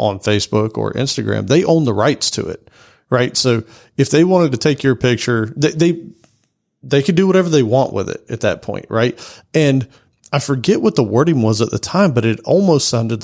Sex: male